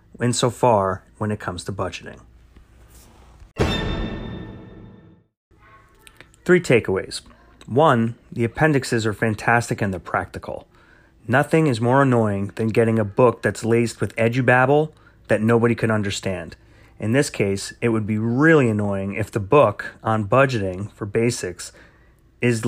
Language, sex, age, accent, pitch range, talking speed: English, male, 30-49, American, 110-135 Hz, 130 wpm